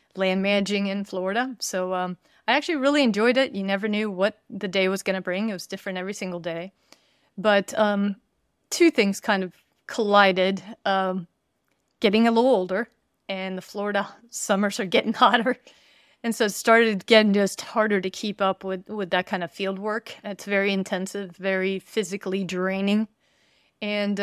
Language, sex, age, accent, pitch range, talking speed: English, female, 30-49, American, 185-220 Hz, 175 wpm